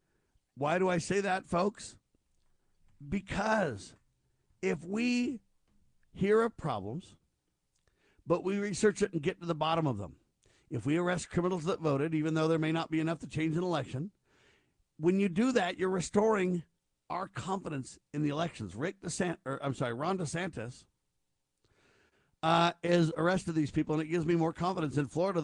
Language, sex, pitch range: English, male, 145-180 Hz